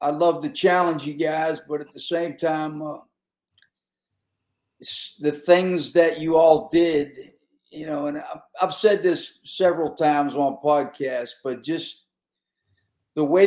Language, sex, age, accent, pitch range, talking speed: English, male, 50-69, American, 145-170 Hz, 145 wpm